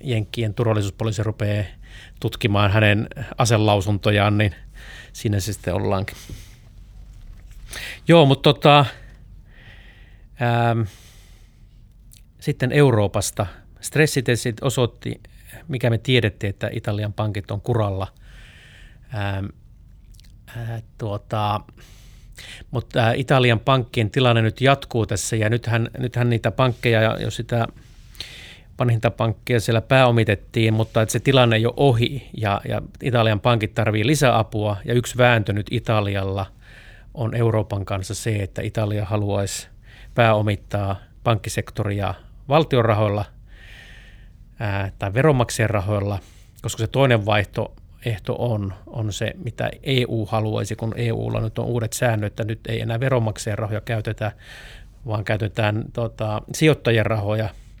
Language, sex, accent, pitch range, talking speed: Finnish, male, native, 105-120 Hz, 110 wpm